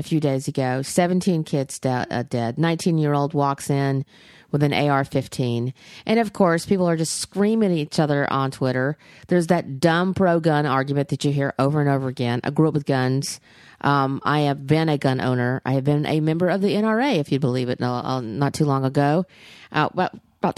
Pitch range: 140-195 Hz